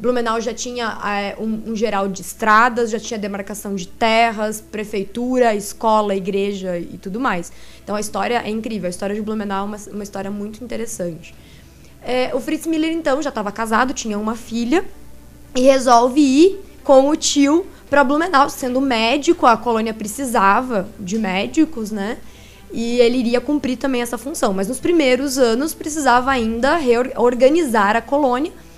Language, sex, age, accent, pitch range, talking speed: Portuguese, female, 20-39, Brazilian, 210-260 Hz, 165 wpm